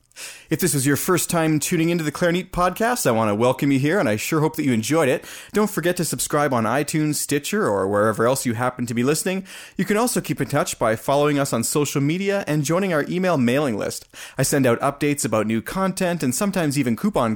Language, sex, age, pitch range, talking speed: English, male, 30-49, 120-155 Hz, 240 wpm